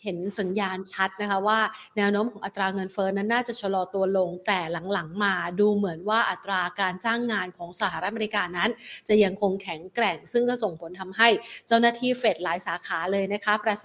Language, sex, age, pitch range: Thai, female, 30-49, 190-230 Hz